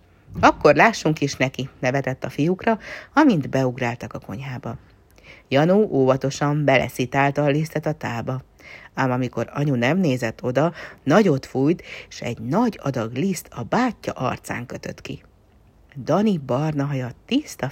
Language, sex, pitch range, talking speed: Hungarian, female, 130-170 Hz, 140 wpm